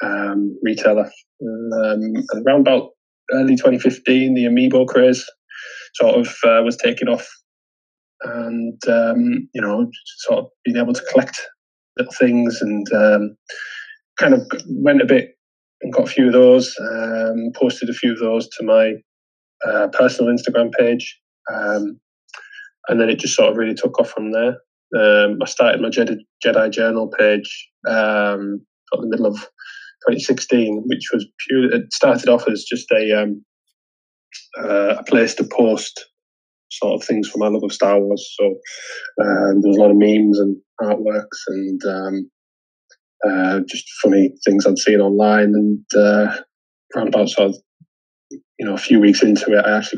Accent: British